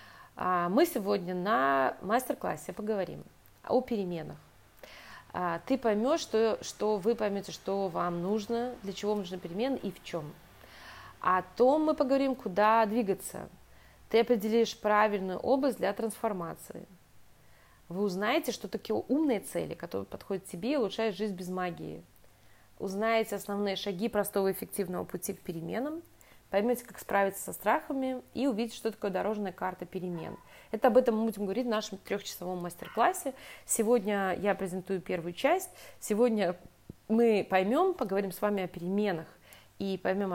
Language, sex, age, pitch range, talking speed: English, female, 20-39, 180-230 Hz, 140 wpm